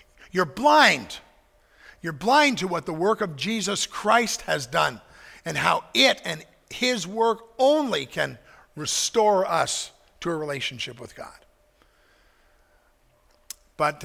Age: 50-69